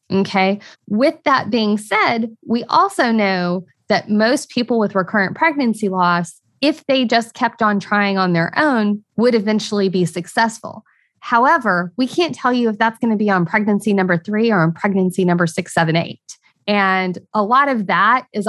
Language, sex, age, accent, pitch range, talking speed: English, female, 20-39, American, 195-230 Hz, 180 wpm